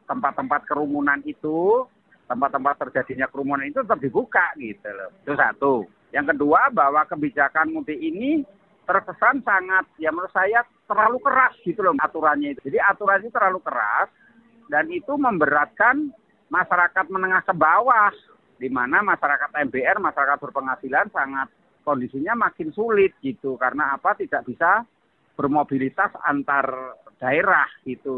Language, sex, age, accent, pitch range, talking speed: Indonesian, male, 40-59, native, 125-190 Hz, 125 wpm